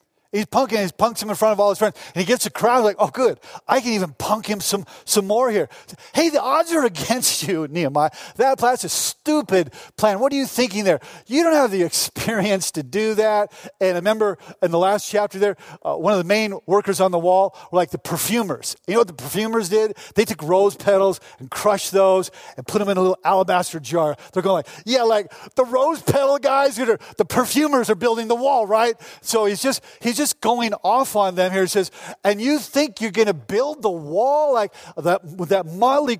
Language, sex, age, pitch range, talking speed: English, male, 40-59, 185-235 Hz, 230 wpm